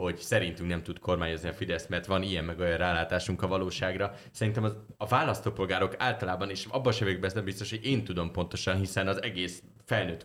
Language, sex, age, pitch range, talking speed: Hungarian, male, 30-49, 90-105 Hz, 205 wpm